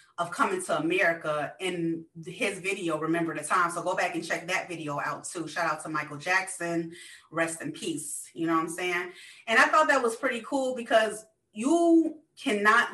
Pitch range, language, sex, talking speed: 170-280 Hz, English, female, 195 wpm